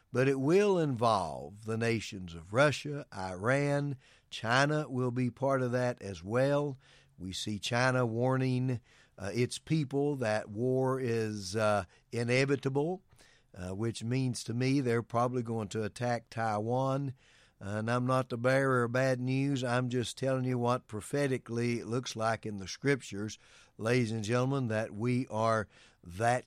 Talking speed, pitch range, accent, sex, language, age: 155 wpm, 110-135 Hz, American, male, English, 60-79